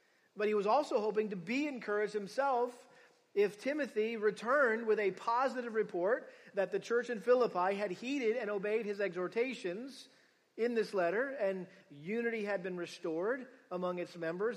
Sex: male